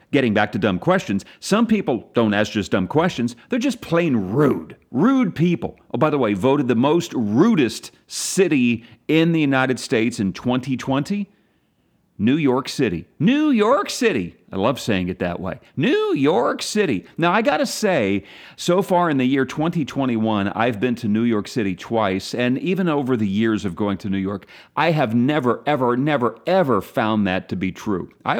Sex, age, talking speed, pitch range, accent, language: male, 40-59, 185 wpm, 105-160 Hz, American, English